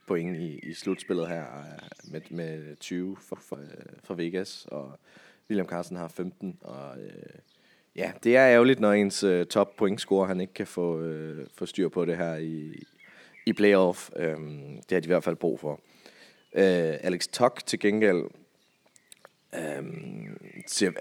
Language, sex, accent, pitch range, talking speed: Danish, male, native, 80-95 Hz, 155 wpm